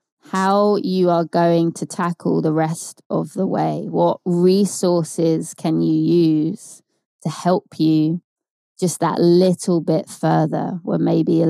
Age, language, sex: 20-39, English, female